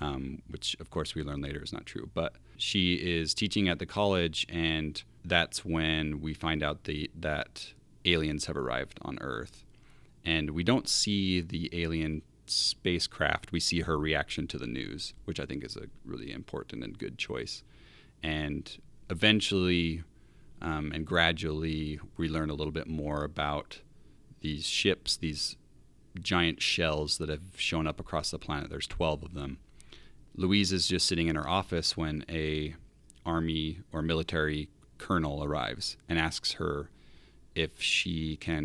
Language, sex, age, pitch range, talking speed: English, male, 30-49, 75-90 Hz, 155 wpm